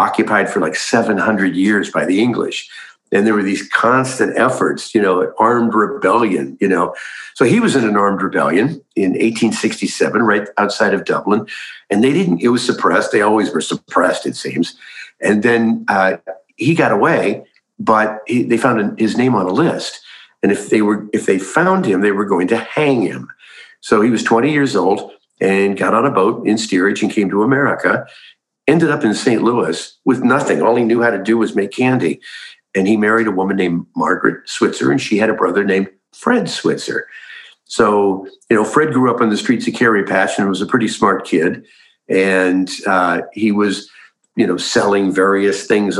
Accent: American